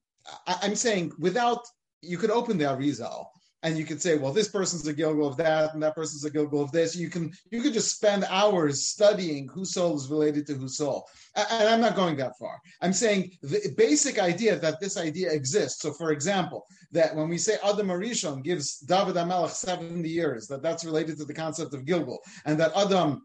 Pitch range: 155-215 Hz